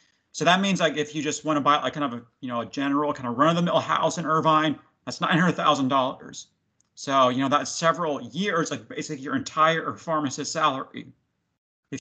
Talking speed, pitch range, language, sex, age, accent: 210 wpm, 140-170 Hz, English, male, 40-59, American